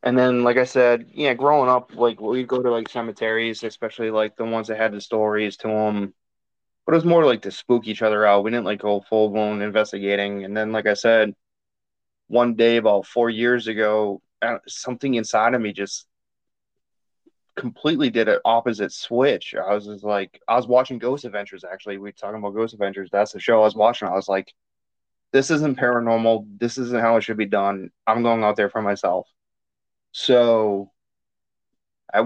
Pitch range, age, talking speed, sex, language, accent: 105-120 Hz, 20-39, 195 wpm, male, English, American